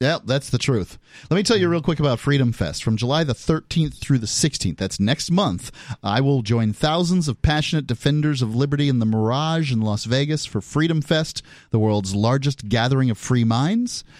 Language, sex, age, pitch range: English, male, 30-49, 115-160 Hz